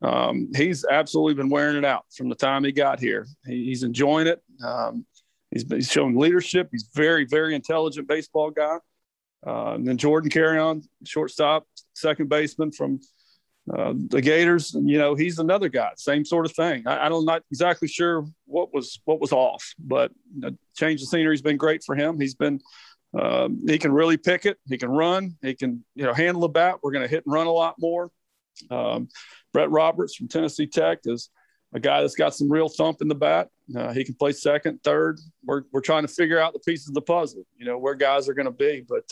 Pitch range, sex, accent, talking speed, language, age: 140-165 Hz, male, American, 220 wpm, English, 40-59